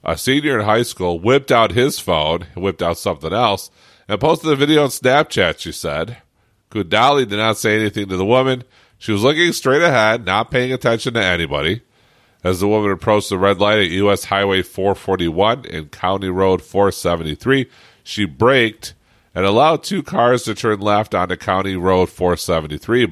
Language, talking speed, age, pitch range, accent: English, 175 wpm, 40-59, 95-120 Hz, American